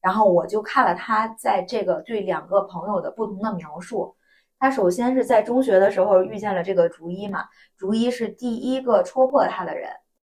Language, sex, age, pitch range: Chinese, female, 20-39, 185-245 Hz